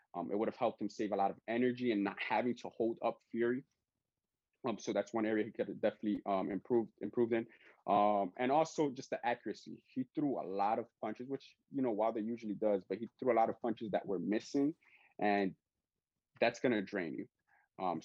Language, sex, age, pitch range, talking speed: English, male, 20-39, 105-130 Hz, 220 wpm